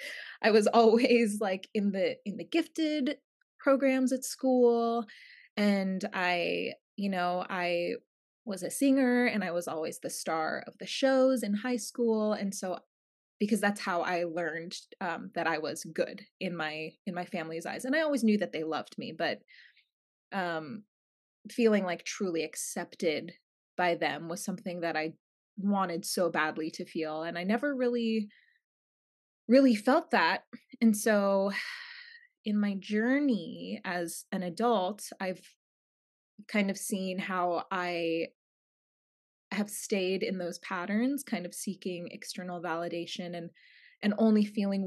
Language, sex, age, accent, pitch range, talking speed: English, female, 20-39, American, 175-230 Hz, 145 wpm